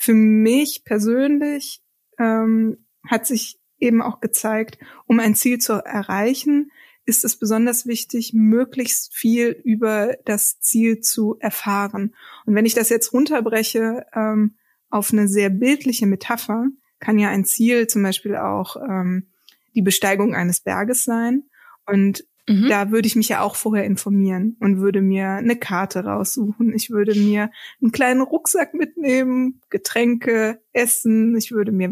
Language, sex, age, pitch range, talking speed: German, female, 20-39, 205-240 Hz, 145 wpm